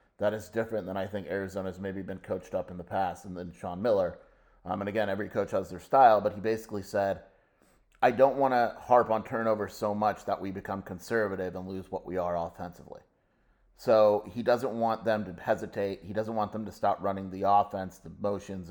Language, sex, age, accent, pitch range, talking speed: English, male, 30-49, American, 95-110 Hz, 220 wpm